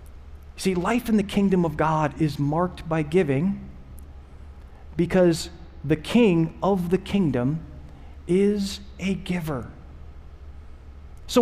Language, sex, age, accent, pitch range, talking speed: English, male, 40-59, American, 135-195 Hz, 110 wpm